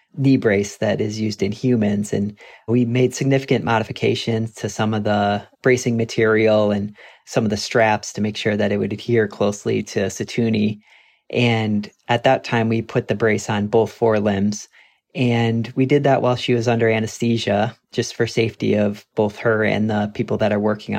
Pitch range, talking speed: 105-120 Hz, 185 wpm